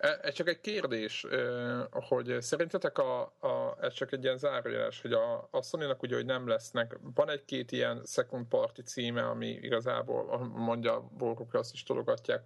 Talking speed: 170 wpm